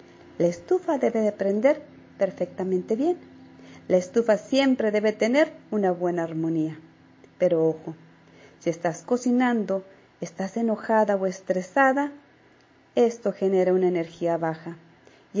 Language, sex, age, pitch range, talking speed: Spanish, female, 40-59, 170-230 Hz, 115 wpm